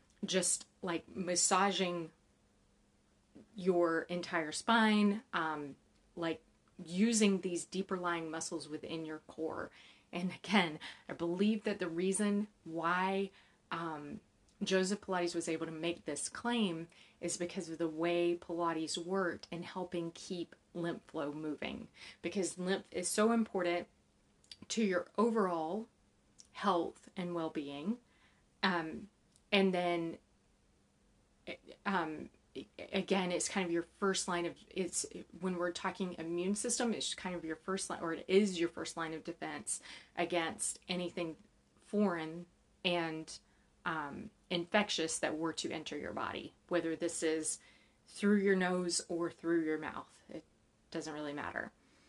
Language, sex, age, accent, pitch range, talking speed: English, female, 30-49, American, 165-195 Hz, 130 wpm